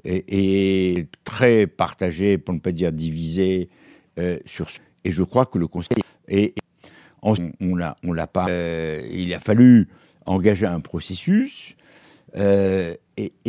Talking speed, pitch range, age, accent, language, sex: 155 wpm, 95-130 Hz, 60-79, French, French, male